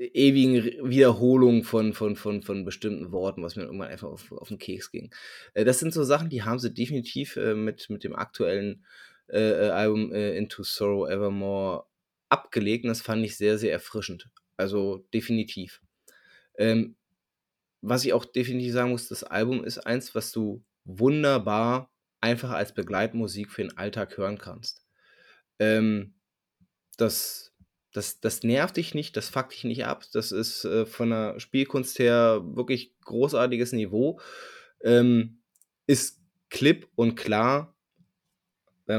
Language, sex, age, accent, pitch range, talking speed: German, male, 20-39, German, 105-125 Hz, 140 wpm